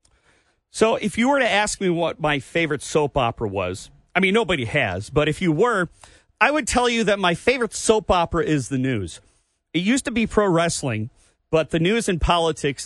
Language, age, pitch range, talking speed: English, 40-59, 130-170 Hz, 205 wpm